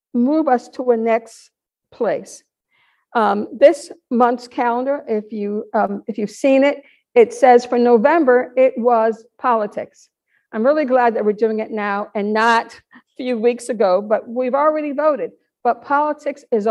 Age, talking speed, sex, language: 50-69, 160 wpm, female, English